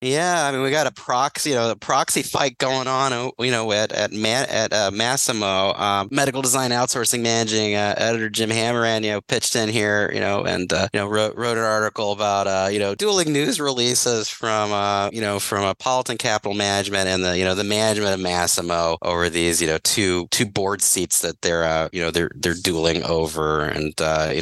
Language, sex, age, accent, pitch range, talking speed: English, male, 30-49, American, 90-115 Hz, 200 wpm